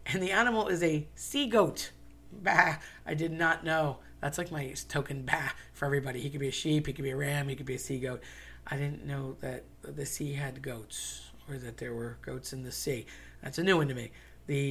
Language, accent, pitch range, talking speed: English, American, 120-155 Hz, 235 wpm